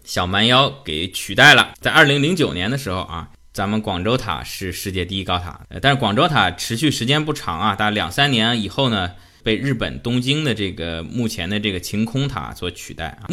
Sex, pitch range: male, 95-130 Hz